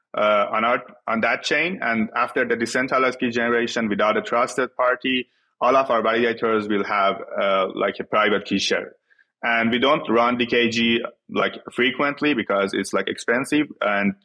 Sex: male